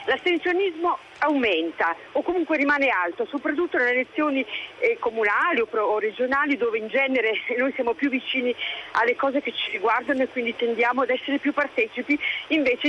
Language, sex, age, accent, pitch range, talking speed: Italian, female, 40-59, native, 245-315 Hz, 160 wpm